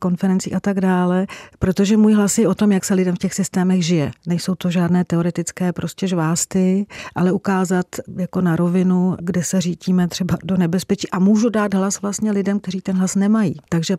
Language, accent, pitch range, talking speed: Czech, native, 165-190 Hz, 195 wpm